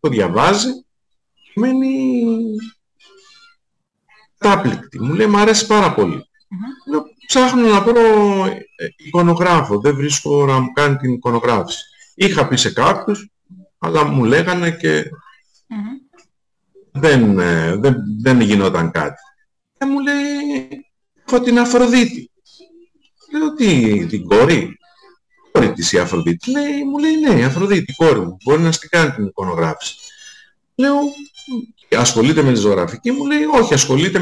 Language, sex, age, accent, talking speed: Greek, male, 50-69, native, 115 wpm